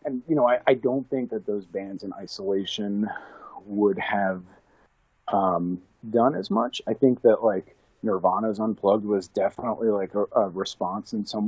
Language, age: English, 40-59